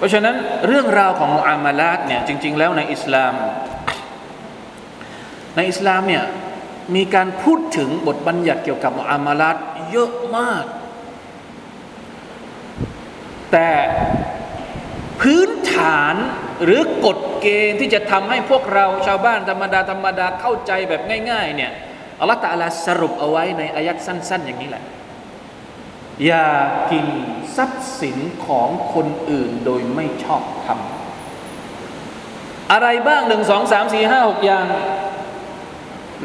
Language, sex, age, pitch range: Thai, male, 20-39, 170-240 Hz